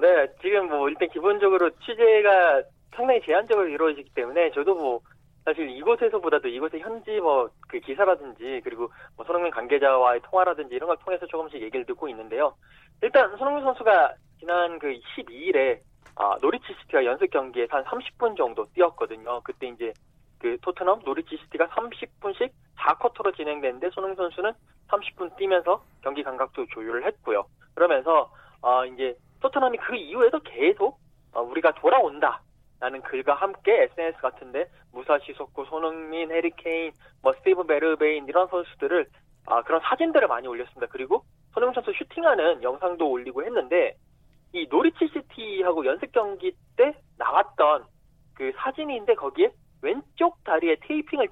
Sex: male